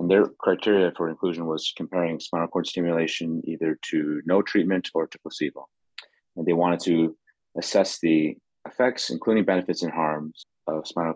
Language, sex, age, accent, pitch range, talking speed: English, male, 30-49, American, 80-90 Hz, 160 wpm